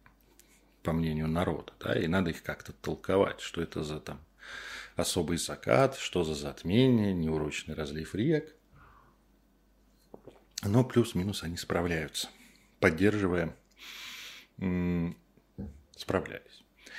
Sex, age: male, 40-59